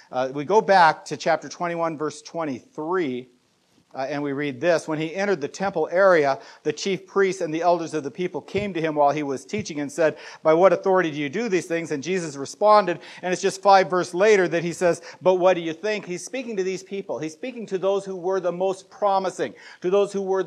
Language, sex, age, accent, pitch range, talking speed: English, male, 50-69, American, 165-200 Hz, 240 wpm